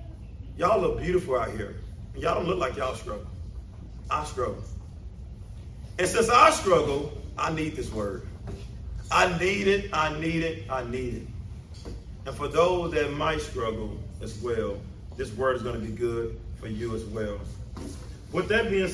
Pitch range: 100-150 Hz